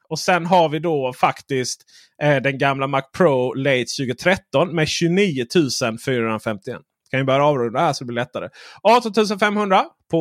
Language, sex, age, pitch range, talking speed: Swedish, male, 30-49, 130-175 Hz, 160 wpm